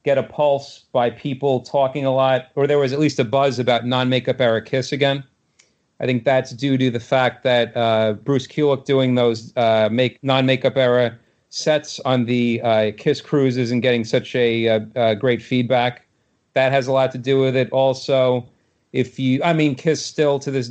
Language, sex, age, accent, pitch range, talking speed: English, male, 40-59, American, 120-140 Hz, 205 wpm